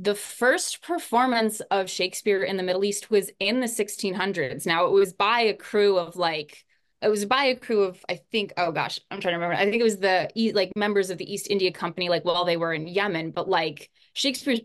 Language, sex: English, female